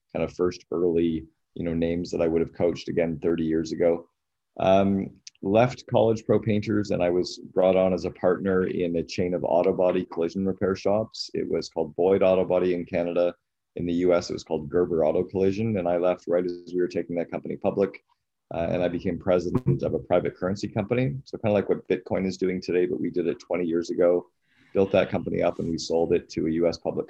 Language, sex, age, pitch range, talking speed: English, male, 30-49, 85-95 Hz, 230 wpm